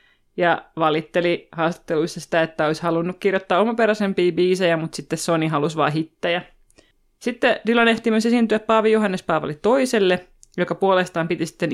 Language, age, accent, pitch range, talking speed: Finnish, 30-49, native, 160-195 Hz, 150 wpm